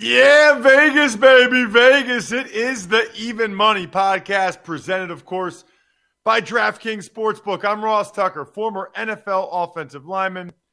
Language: English